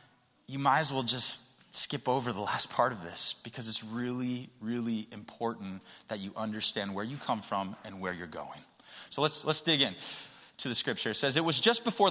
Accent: American